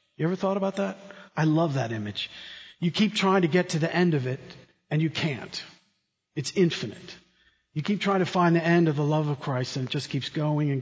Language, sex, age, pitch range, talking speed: English, male, 50-69, 135-170 Hz, 235 wpm